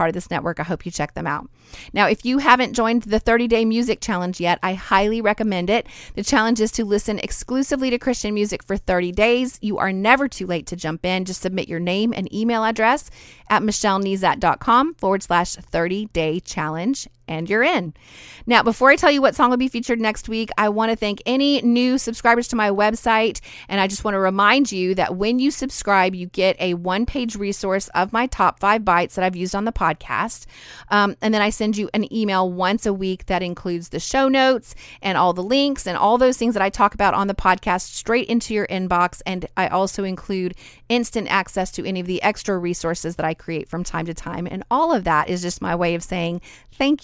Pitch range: 180-230 Hz